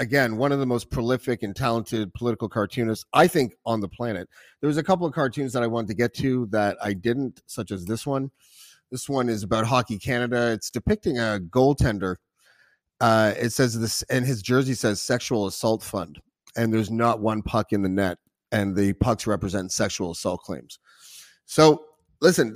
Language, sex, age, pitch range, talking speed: English, male, 30-49, 110-140 Hz, 190 wpm